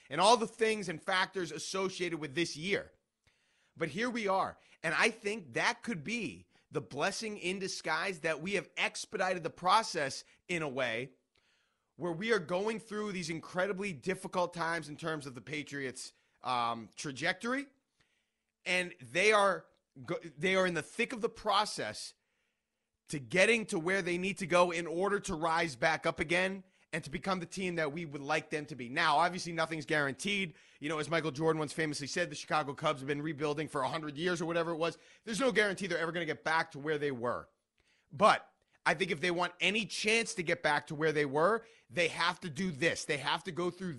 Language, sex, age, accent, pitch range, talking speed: English, male, 30-49, American, 155-195 Hz, 205 wpm